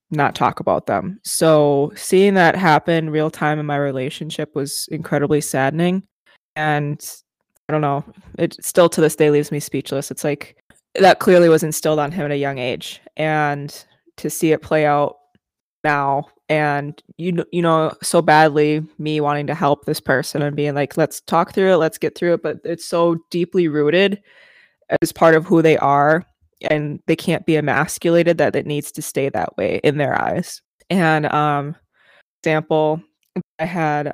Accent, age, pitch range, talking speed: American, 20-39, 145-170 Hz, 180 wpm